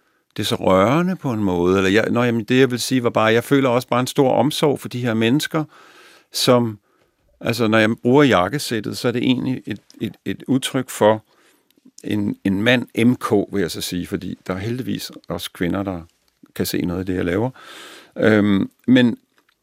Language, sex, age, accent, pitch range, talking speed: Danish, male, 50-69, native, 100-130 Hz, 185 wpm